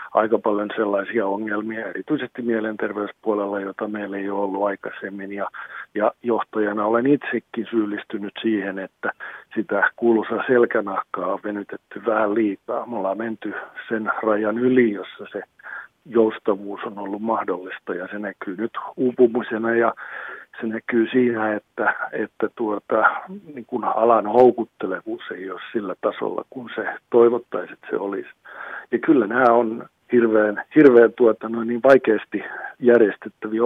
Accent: native